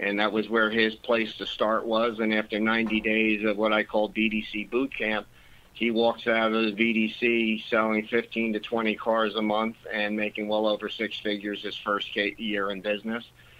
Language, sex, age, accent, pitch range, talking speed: English, male, 50-69, American, 110-120 Hz, 195 wpm